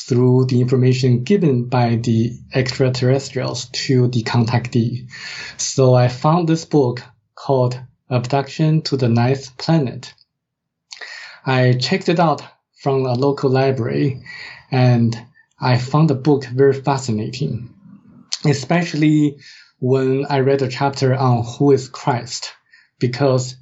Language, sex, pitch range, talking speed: English, male, 125-145 Hz, 120 wpm